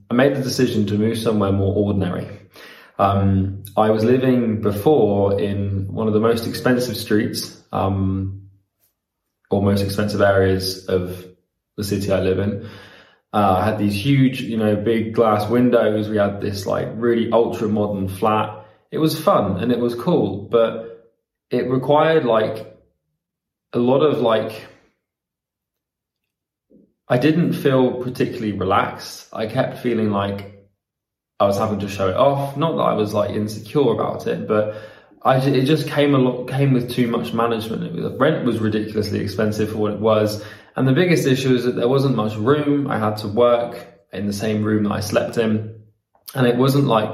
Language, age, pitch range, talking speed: English, 20-39, 100-120 Hz, 175 wpm